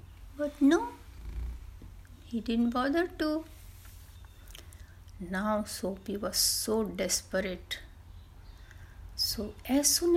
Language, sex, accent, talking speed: Hindi, female, native, 85 wpm